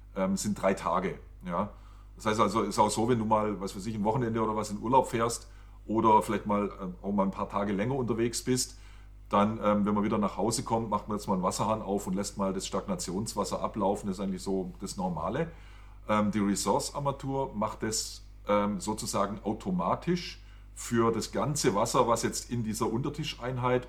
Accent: German